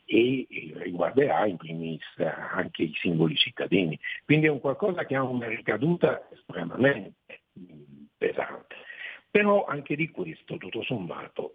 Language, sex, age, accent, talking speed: Italian, male, 60-79, native, 125 wpm